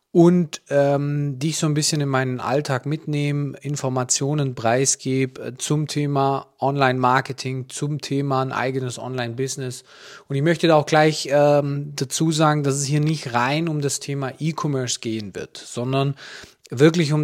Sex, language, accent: male, German, German